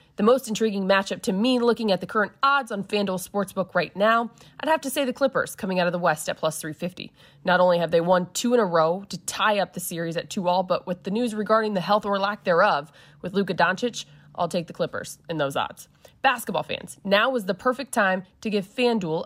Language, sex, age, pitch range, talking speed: English, female, 20-39, 175-225 Hz, 235 wpm